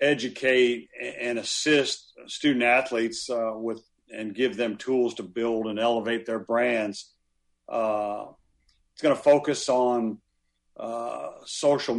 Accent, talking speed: American, 125 wpm